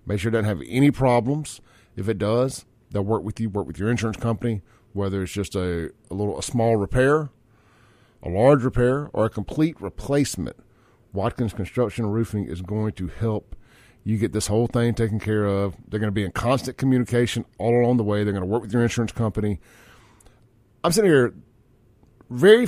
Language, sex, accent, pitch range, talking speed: English, male, American, 105-120 Hz, 195 wpm